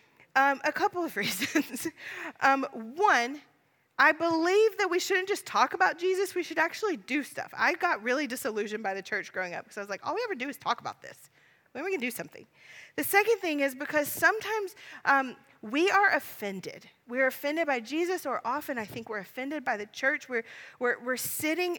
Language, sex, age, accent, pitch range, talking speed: English, female, 30-49, American, 210-275 Hz, 205 wpm